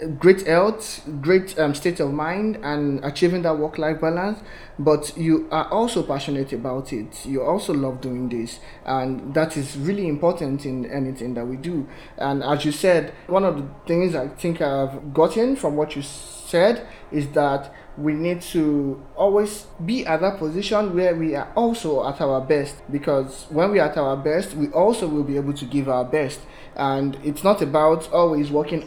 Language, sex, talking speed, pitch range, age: English, male, 185 wpm, 140-170 Hz, 20-39